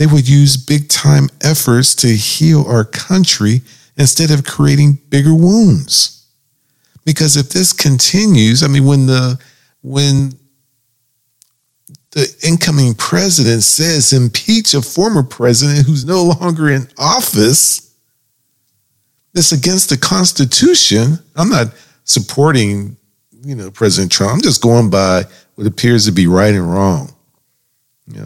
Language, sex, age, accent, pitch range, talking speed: English, male, 50-69, American, 105-145 Hz, 125 wpm